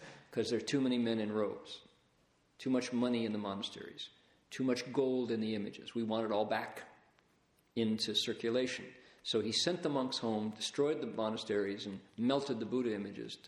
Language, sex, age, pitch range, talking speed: English, male, 50-69, 110-135 Hz, 185 wpm